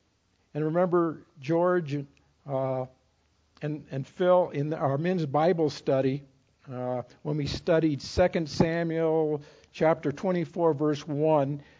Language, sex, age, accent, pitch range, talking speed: English, male, 60-79, American, 130-165 Hz, 110 wpm